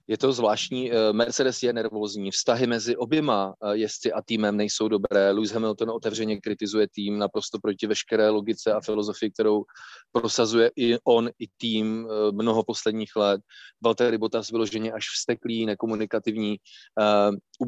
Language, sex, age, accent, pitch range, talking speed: Czech, male, 30-49, native, 105-120 Hz, 140 wpm